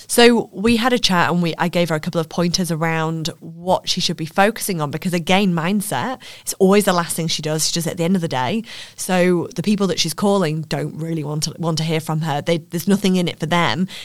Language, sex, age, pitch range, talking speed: English, female, 20-39, 160-190 Hz, 265 wpm